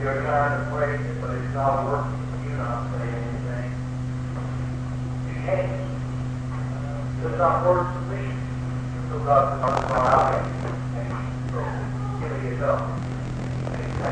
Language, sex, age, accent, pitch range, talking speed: English, male, 50-69, American, 125-160 Hz, 85 wpm